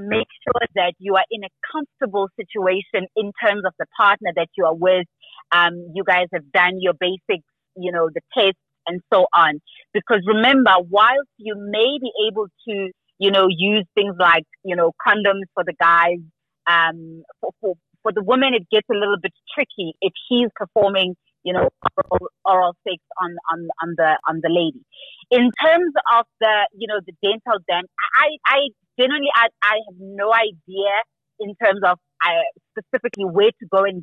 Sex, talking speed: female, 185 wpm